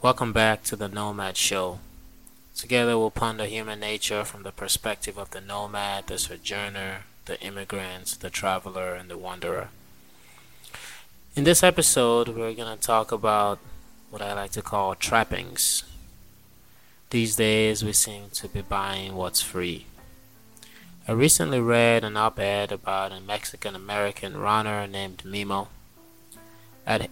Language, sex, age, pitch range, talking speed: English, male, 20-39, 100-110 Hz, 135 wpm